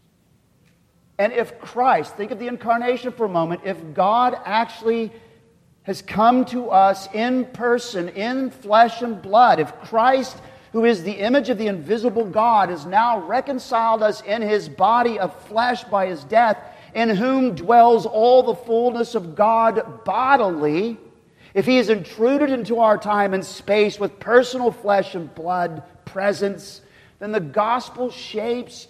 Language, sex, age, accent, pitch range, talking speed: English, male, 50-69, American, 195-240 Hz, 150 wpm